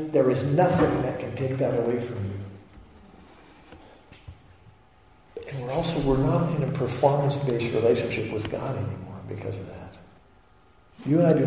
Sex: male